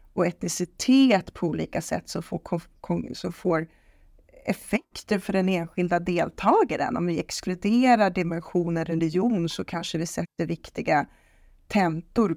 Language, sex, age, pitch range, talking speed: Swedish, female, 30-49, 170-205 Hz, 115 wpm